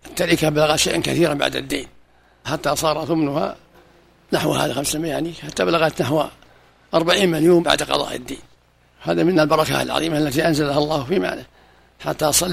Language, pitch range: Arabic, 120-165 Hz